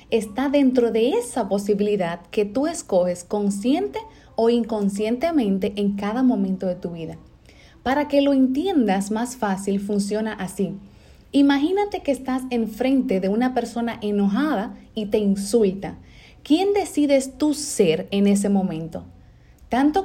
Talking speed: 130 wpm